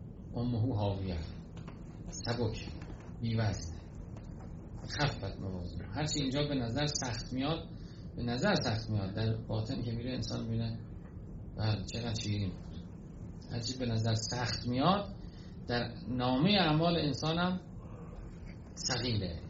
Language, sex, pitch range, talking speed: Persian, male, 95-135 Hz, 110 wpm